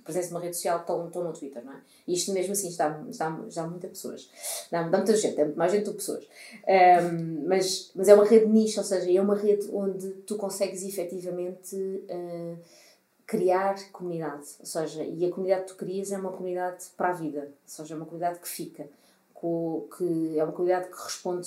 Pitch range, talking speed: 170-210 Hz, 205 wpm